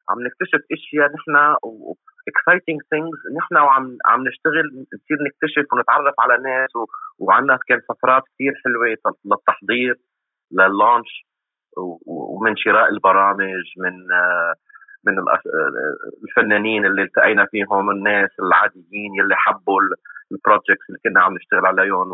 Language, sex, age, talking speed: Arabic, male, 30-49, 125 wpm